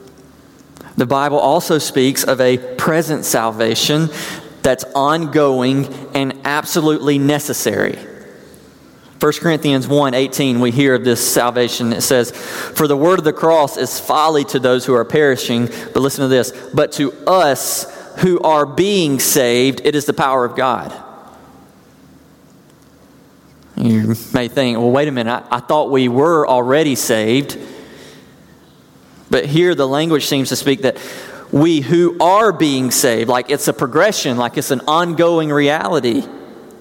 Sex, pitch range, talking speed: male, 130-155 Hz, 145 wpm